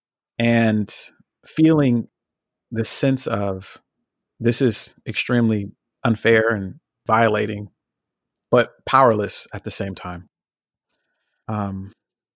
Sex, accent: male, American